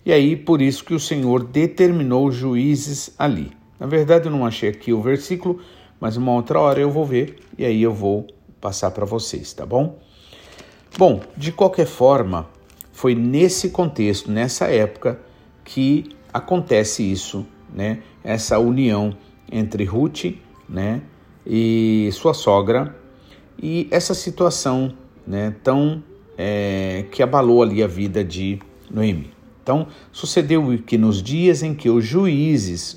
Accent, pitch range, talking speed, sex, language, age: Brazilian, 105-150 Hz, 140 wpm, male, Portuguese, 50-69